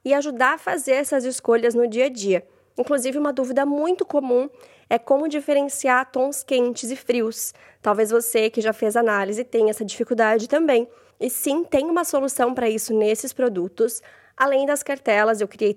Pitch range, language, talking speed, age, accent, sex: 220-270 Hz, Portuguese, 175 wpm, 20-39, Brazilian, female